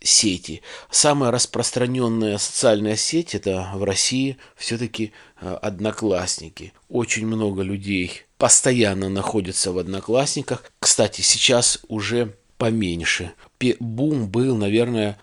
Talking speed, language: 95 wpm, Russian